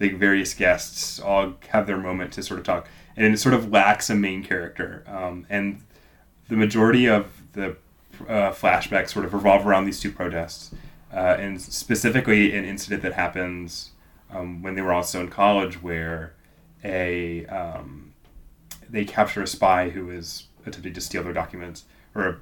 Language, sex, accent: English, male, American